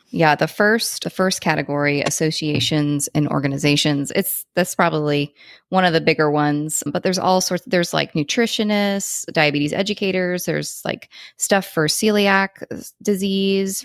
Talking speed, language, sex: 140 wpm, English, female